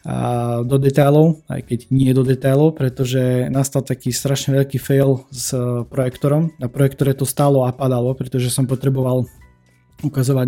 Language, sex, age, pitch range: Slovak, male, 20-39, 125-140 Hz